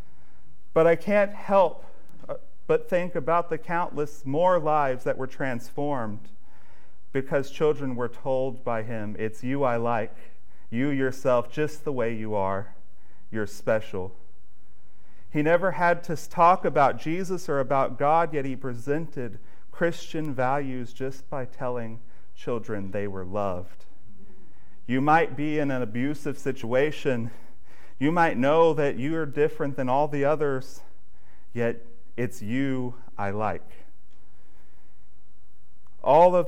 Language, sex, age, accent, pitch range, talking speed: English, male, 40-59, American, 105-145 Hz, 130 wpm